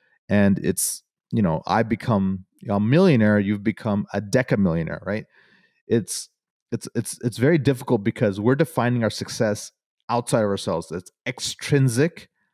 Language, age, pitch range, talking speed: English, 30-49, 105-130 Hz, 140 wpm